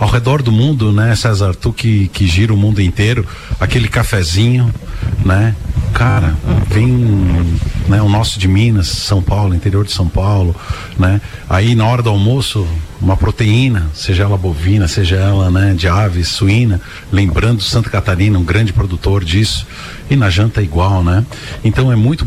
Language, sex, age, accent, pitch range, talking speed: Portuguese, male, 50-69, Brazilian, 95-120 Hz, 165 wpm